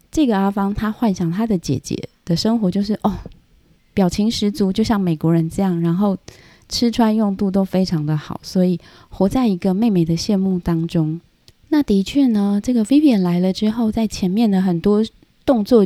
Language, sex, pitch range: Chinese, female, 175-225 Hz